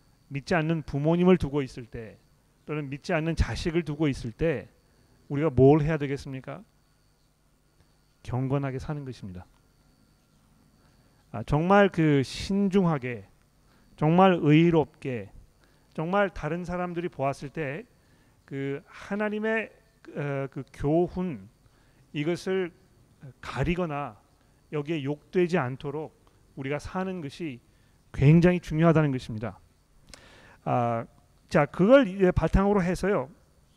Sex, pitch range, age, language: male, 130-170 Hz, 40-59, Korean